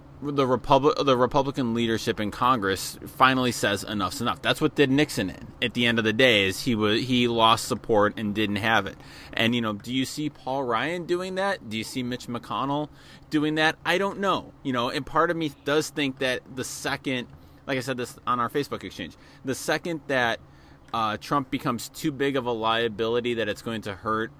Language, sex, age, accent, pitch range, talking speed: English, male, 20-39, American, 110-140 Hz, 215 wpm